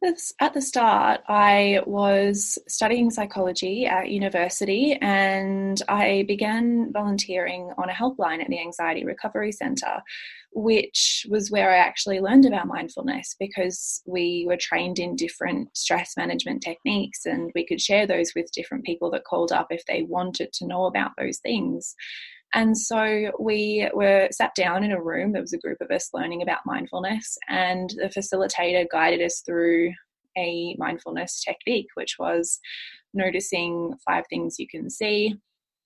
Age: 20-39